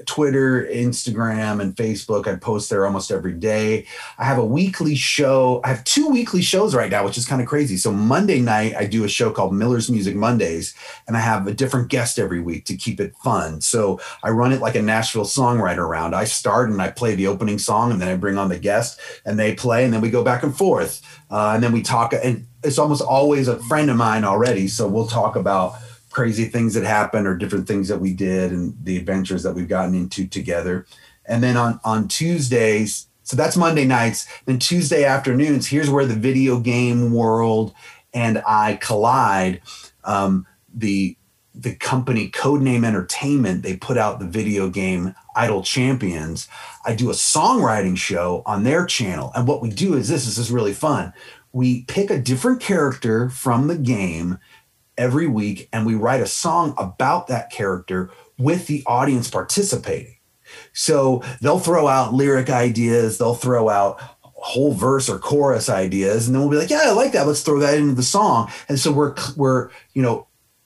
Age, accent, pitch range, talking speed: 30-49, American, 100-130 Hz, 195 wpm